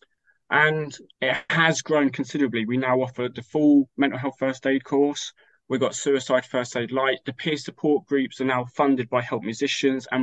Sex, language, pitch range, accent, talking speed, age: male, English, 120-140 Hz, British, 190 wpm, 20-39